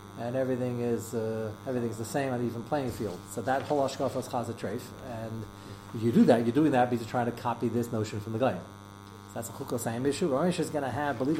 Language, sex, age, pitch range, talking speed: English, male, 40-59, 100-145 Hz, 240 wpm